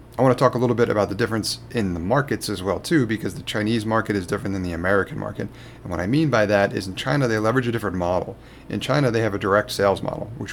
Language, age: English, 30-49